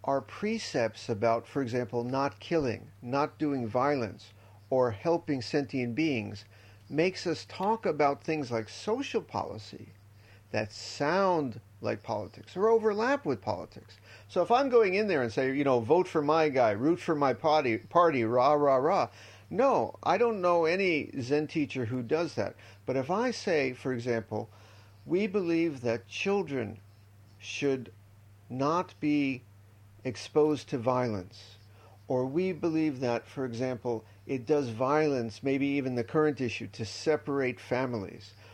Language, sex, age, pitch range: English, male, 50-69, 105-150 Hz